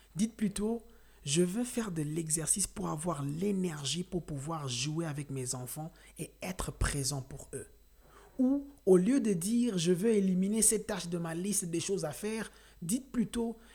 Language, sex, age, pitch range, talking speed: French, male, 50-69, 155-205 Hz, 175 wpm